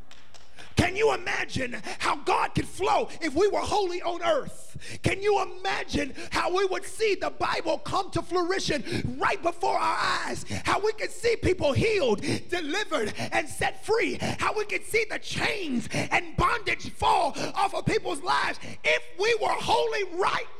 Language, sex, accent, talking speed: English, male, American, 165 wpm